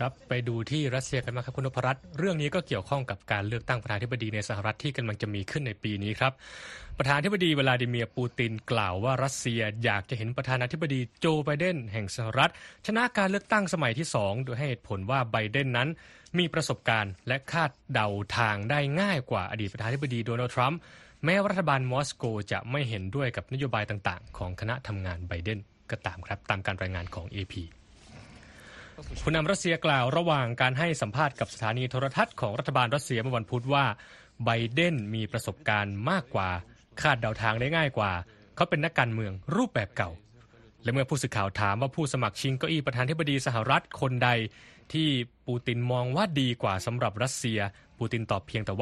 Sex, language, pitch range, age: male, Thai, 110-140 Hz, 20-39